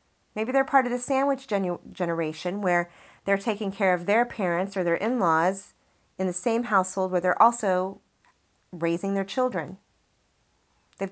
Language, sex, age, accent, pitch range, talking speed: English, female, 30-49, American, 175-225 Hz, 150 wpm